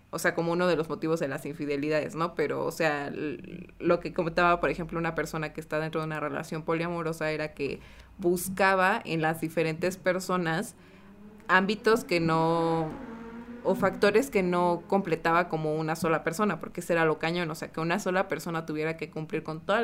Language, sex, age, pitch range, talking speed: Spanish, female, 20-39, 160-185 Hz, 190 wpm